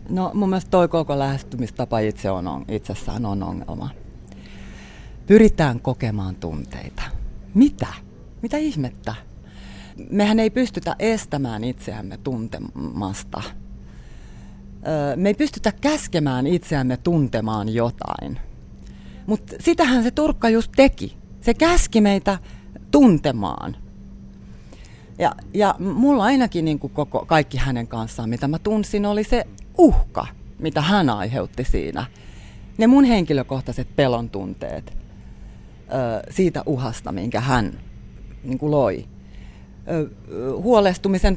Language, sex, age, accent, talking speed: Finnish, female, 40-59, native, 105 wpm